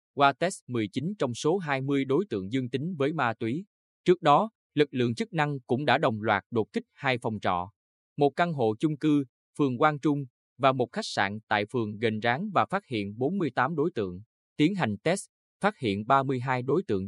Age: 20-39